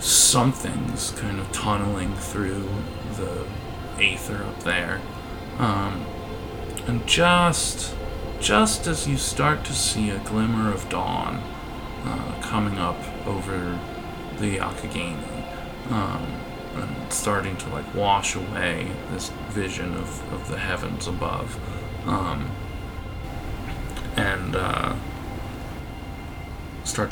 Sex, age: male, 20-39